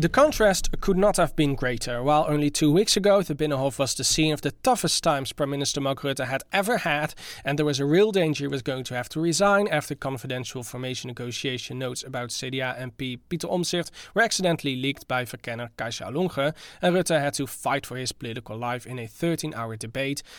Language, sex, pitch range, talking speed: English, male, 130-175 Hz, 210 wpm